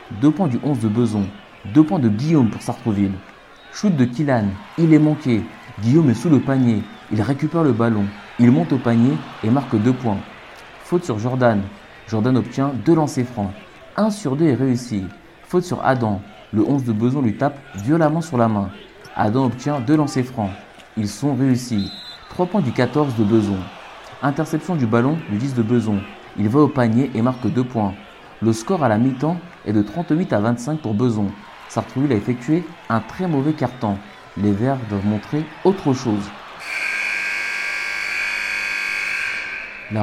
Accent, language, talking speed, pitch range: French, French, 175 wpm, 105-145 Hz